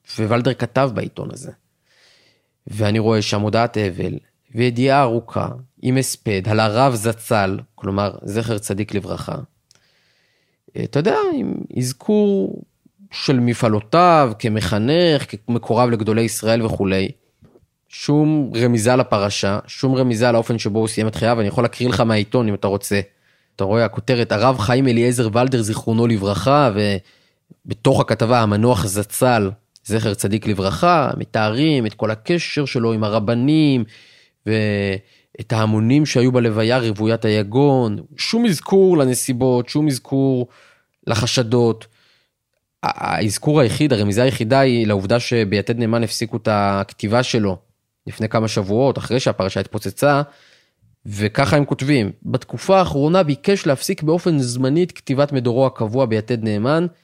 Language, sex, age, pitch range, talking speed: Hebrew, male, 20-39, 110-135 Hz, 125 wpm